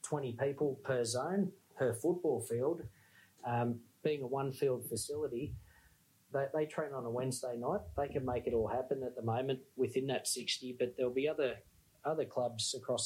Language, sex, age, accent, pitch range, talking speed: English, male, 30-49, Australian, 120-145 Hz, 180 wpm